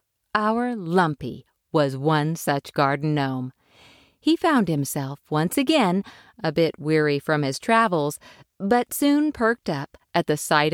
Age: 50-69